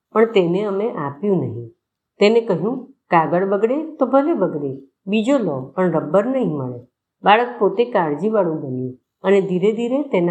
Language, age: Gujarati, 50-69